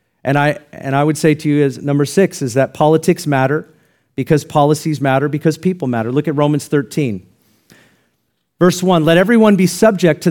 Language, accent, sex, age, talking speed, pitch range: English, American, male, 40-59, 185 wpm, 140-175 Hz